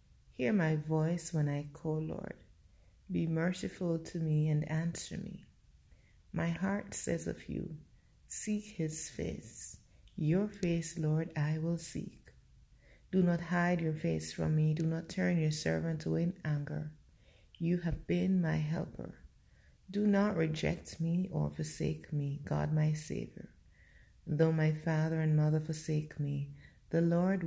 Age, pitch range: 30-49, 140-175 Hz